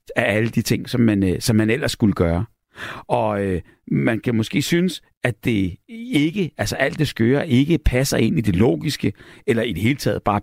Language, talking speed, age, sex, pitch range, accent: Danish, 205 wpm, 60-79, male, 105-135 Hz, native